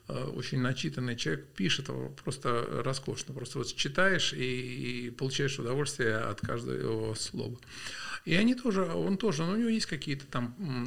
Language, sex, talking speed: Russian, male, 145 wpm